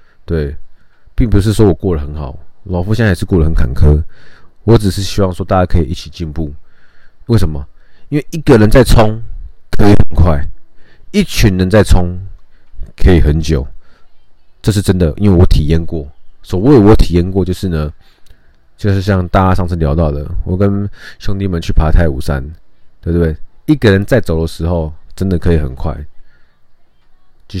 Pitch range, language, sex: 75-100 Hz, Chinese, male